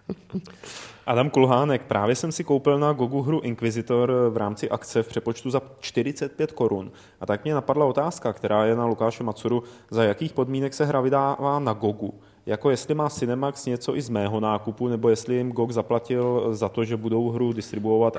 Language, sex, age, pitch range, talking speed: Czech, male, 30-49, 105-130 Hz, 185 wpm